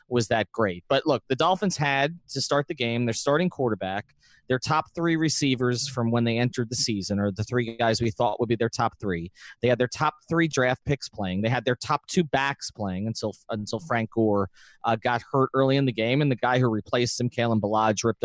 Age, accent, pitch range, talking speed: 30-49, American, 120-150 Hz, 235 wpm